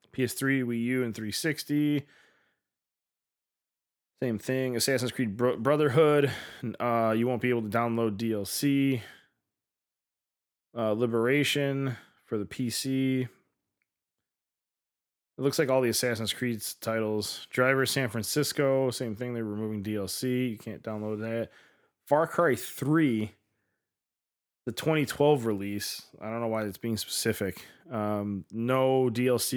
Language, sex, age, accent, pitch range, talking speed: English, male, 20-39, American, 110-135 Hz, 120 wpm